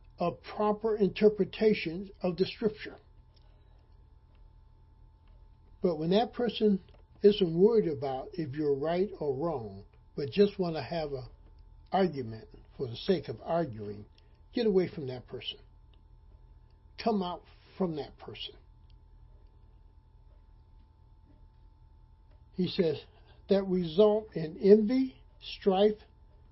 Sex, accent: male, American